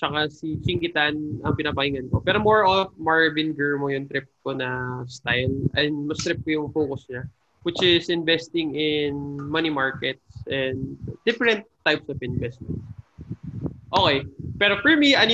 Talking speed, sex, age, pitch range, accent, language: 155 wpm, male, 20-39, 135-195 Hz, Filipino, English